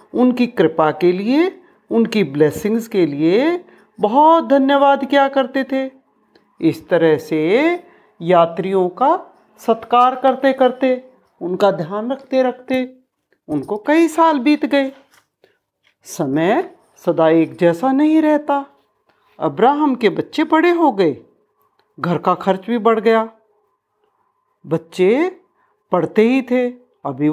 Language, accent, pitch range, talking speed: Hindi, native, 180-295 Hz, 115 wpm